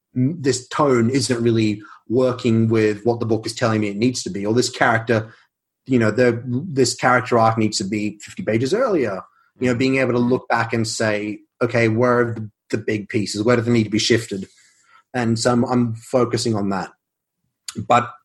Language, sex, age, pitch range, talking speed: English, male, 30-49, 110-125 Hz, 200 wpm